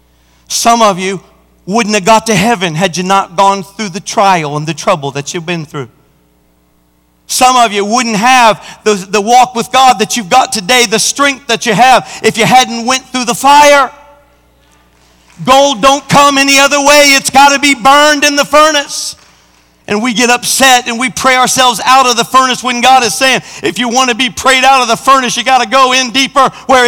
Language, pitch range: English, 195-280 Hz